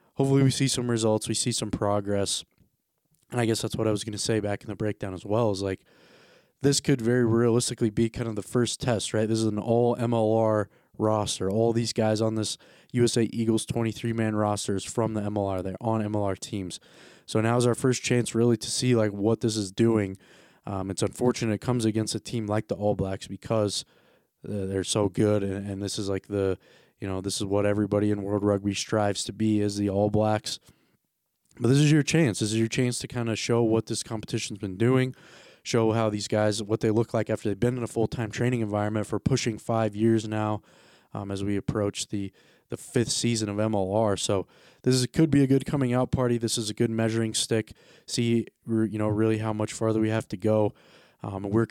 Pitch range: 105-120 Hz